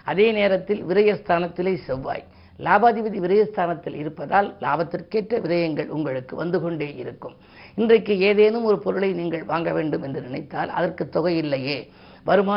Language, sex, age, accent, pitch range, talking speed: Tamil, female, 50-69, native, 160-190 Hz, 120 wpm